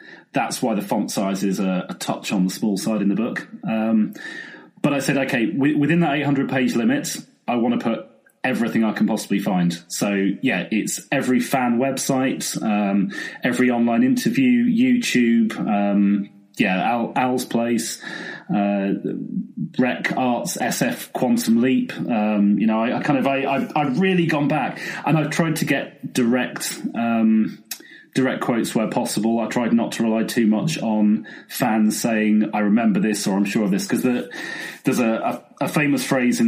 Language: English